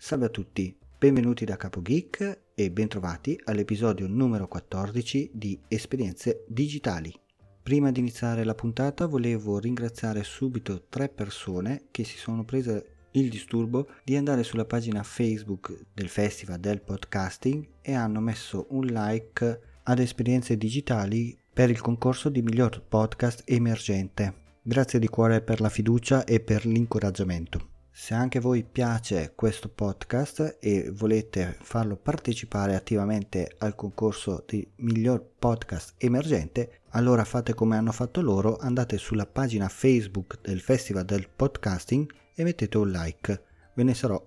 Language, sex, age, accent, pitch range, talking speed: Italian, male, 40-59, native, 100-125 Hz, 140 wpm